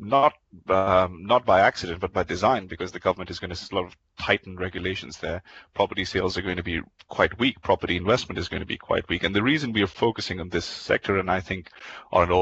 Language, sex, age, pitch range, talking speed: English, male, 30-49, 90-105 Hz, 230 wpm